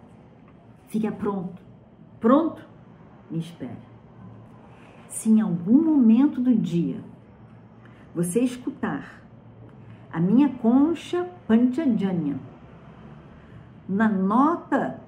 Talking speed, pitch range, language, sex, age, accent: 75 wpm, 165-235 Hz, Portuguese, female, 50-69, Brazilian